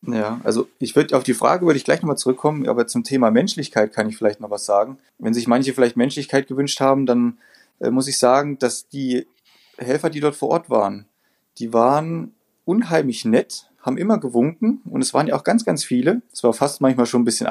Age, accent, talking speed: 30-49, German, 220 wpm